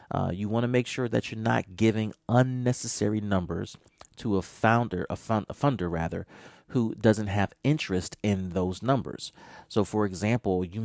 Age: 30-49